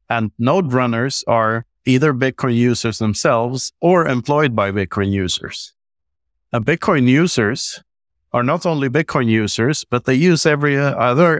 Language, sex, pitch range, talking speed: English, male, 105-145 Hz, 135 wpm